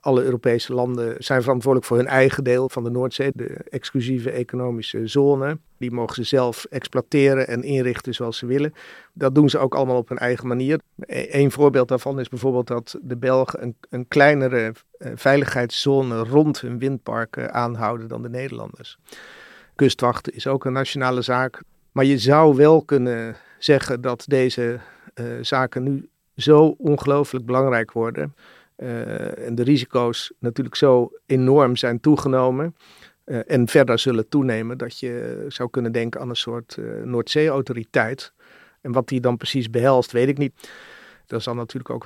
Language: Dutch